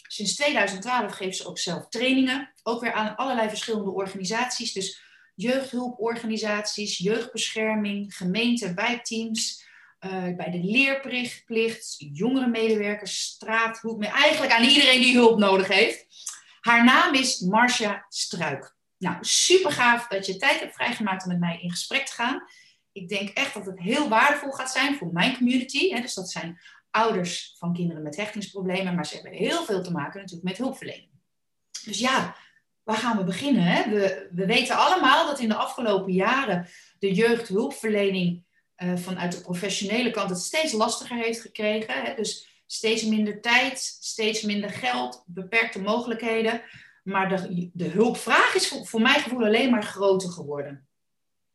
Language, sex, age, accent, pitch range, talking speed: Dutch, female, 40-59, Dutch, 190-245 Hz, 150 wpm